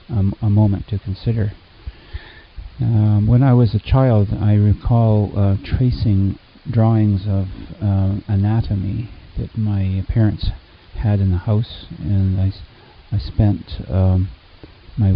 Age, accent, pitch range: 40-59, American, 95-105 Hz